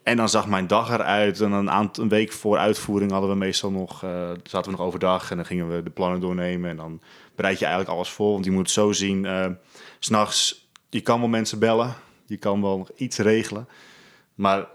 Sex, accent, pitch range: male, Dutch, 90-105 Hz